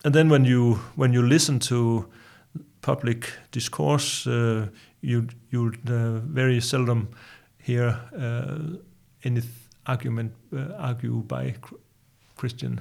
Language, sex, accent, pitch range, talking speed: English, male, German, 115-135 Hz, 120 wpm